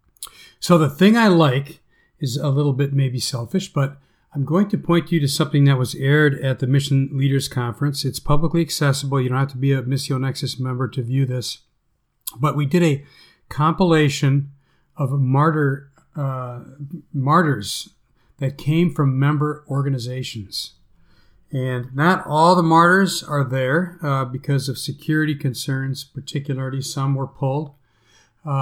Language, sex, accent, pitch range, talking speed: English, male, American, 130-145 Hz, 155 wpm